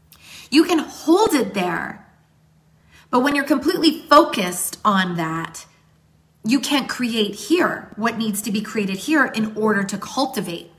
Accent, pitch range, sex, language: American, 185-255 Hz, female, English